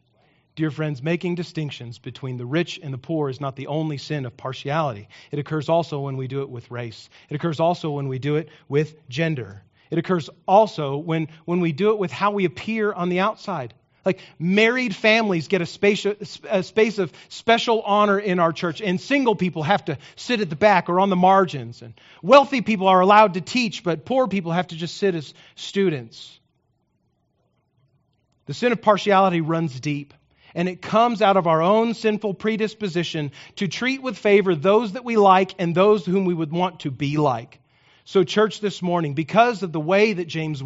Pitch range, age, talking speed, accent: 140-190 Hz, 40-59, 200 wpm, American